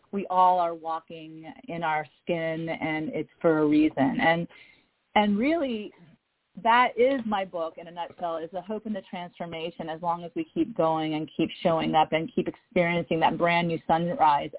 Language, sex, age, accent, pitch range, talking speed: English, female, 30-49, American, 165-200 Hz, 185 wpm